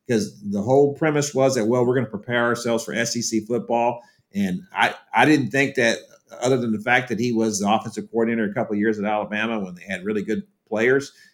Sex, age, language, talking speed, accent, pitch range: male, 50-69, English, 230 wpm, American, 110-150 Hz